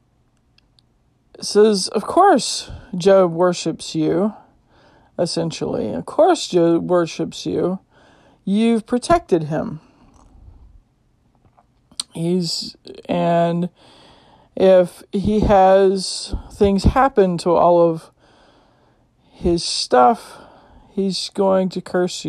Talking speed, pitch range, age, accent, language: 80 wpm, 165-190 Hz, 40-59, American, English